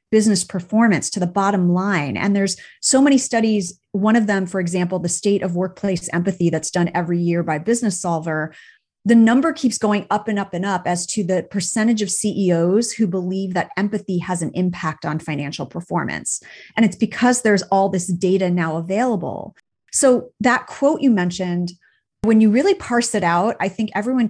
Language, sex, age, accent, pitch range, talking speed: English, female, 30-49, American, 180-225 Hz, 190 wpm